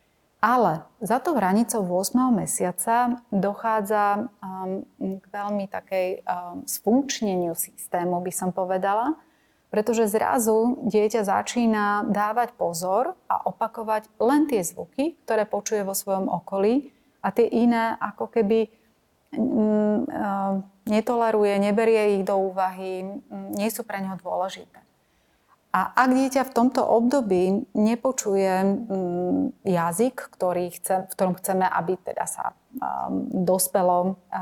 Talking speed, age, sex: 110 wpm, 30-49, female